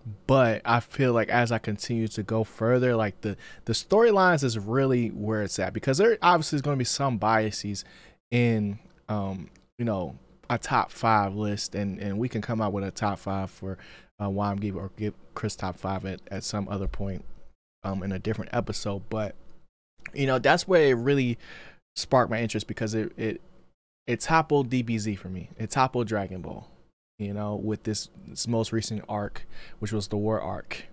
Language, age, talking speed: English, 20-39, 195 wpm